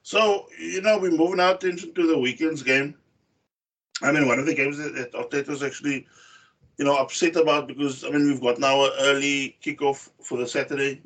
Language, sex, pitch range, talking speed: English, male, 135-180 Hz, 200 wpm